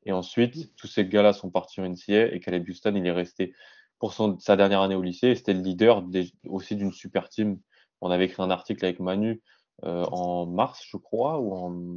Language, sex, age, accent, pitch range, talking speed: French, male, 20-39, French, 90-105 Hz, 225 wpm